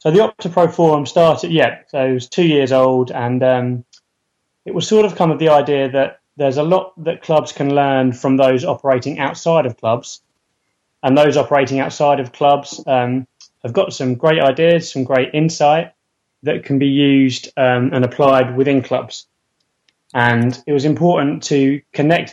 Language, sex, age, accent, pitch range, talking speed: English, male, 20-39, British, 125-145 Hz, 175 wpm